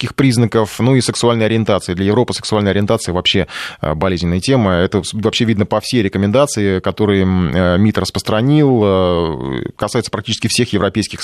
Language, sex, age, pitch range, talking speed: Russian, male, 20-39, 100-120 Hz, 135 wpm